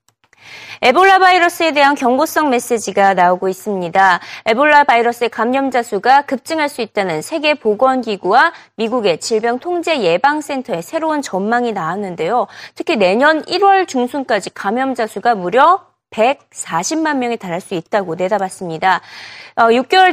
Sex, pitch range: female, 205-320 Hz